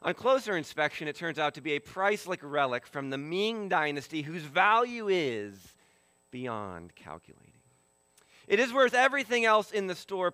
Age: 40-59